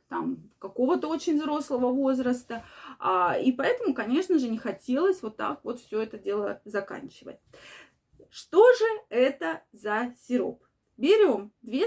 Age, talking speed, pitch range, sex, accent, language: 20-39, 130 wpm, 230-325 Hz, female, native, Russian